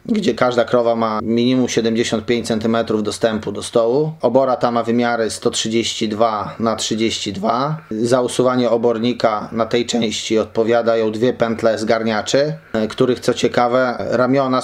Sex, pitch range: male, 115-130 Hz